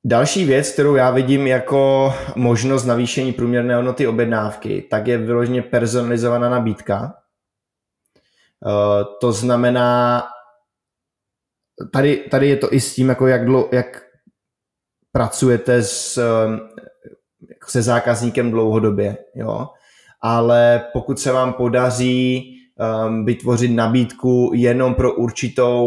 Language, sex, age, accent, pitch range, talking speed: Czech, male, 20-39, native, 110-125 Hz, 110 wpm